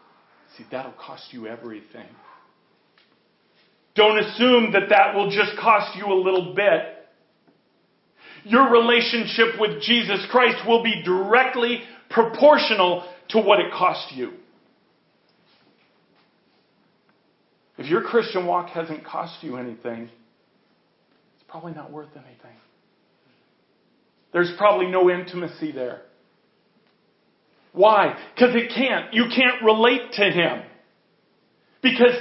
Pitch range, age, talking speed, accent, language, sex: 185-240 Hz, 40-59, 110 wpm, American, English, male